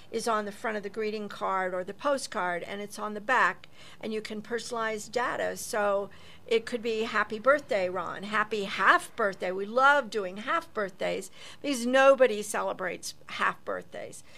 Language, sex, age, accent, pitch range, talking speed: English, female, 50-69, American, 195-235 Hz, 170 wpm